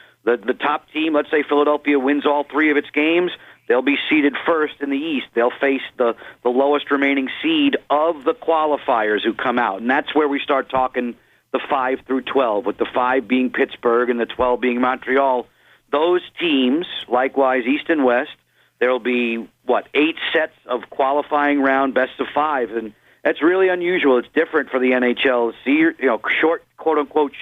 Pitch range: 130-155 Hz